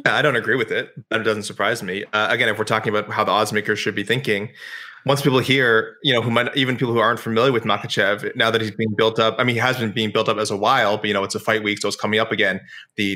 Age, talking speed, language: 20-39, 305 wpm, English